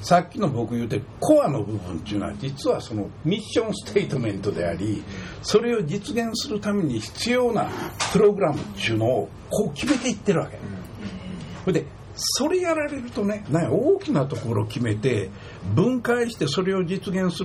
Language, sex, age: Japanese, male, 60-79